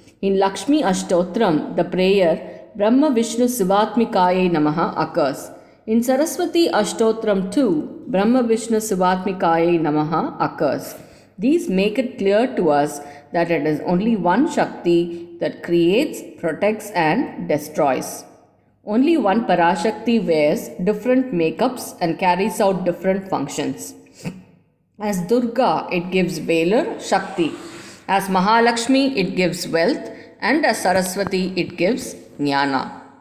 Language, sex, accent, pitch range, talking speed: English, female, Indian, 175-235 Hz, 115 wpm